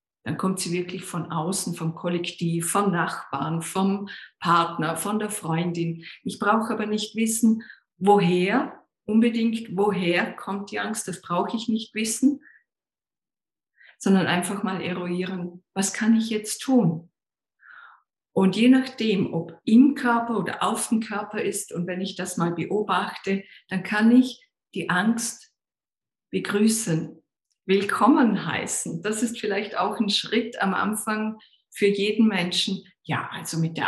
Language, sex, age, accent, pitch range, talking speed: German, female, 50-69, German, 175-220 Hz, 140 wpm